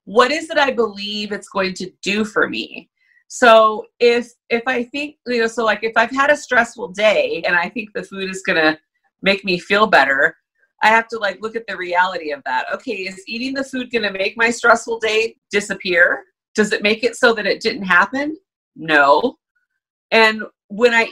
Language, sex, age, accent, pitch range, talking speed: English, female, 30-49, American, 190-260 Hz, 205 wpm